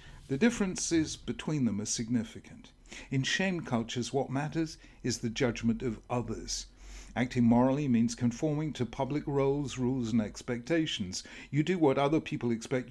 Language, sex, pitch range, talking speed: English, male, 115-145 Hz, 150 wpm